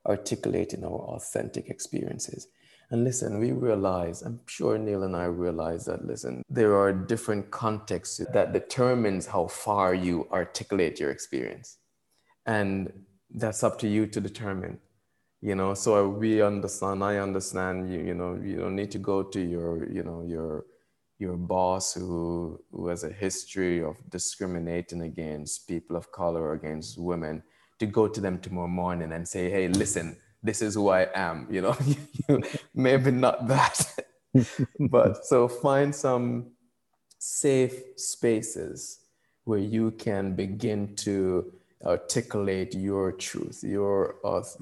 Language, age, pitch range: English, 20-39, 90-110 Hz